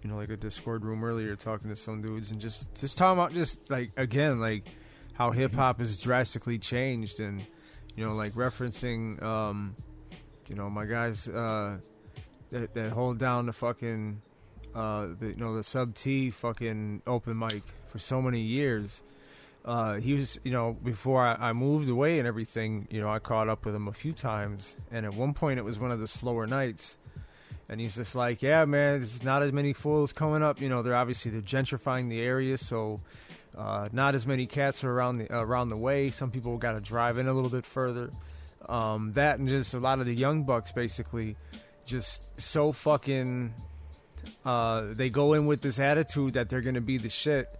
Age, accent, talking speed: 20-39, American, 200 wpm